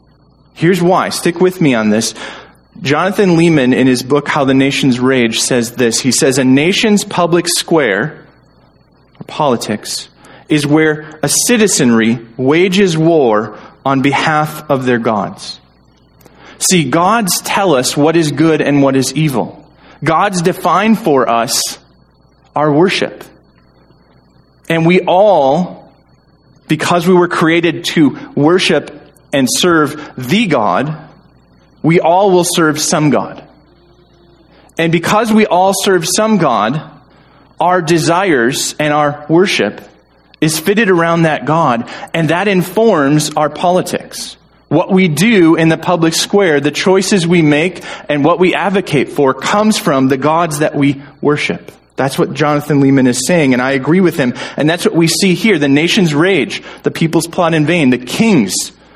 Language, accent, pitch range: English, American, 140-180 Hz